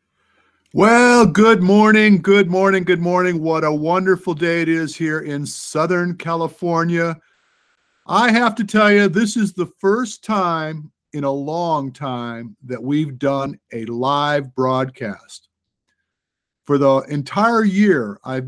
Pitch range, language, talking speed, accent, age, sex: 145-190 Hz, English, 135 wpm, American, 50-69, male